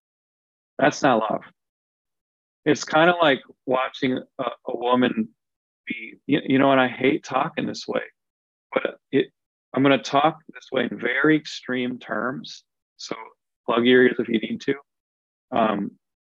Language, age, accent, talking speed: English, 40-59, American, 155 wpm